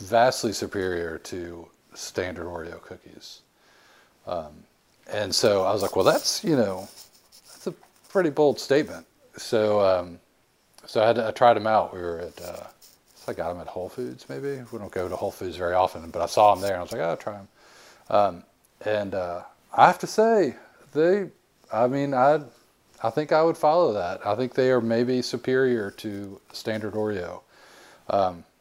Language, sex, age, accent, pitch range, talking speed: English, male, 40-59, American, 100-145 Hz, 190 wpm